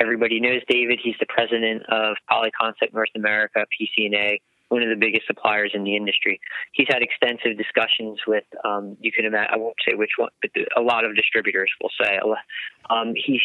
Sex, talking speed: male, 185 wpm